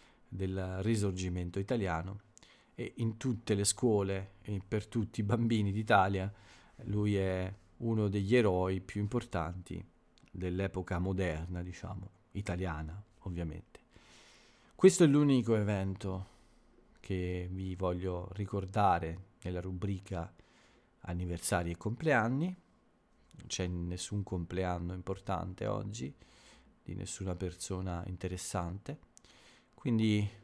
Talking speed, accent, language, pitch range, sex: 100 wpm, native, Italian, 90-115 Hz, male